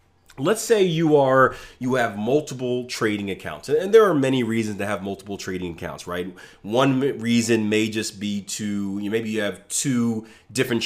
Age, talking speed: 30-49, 180 wpm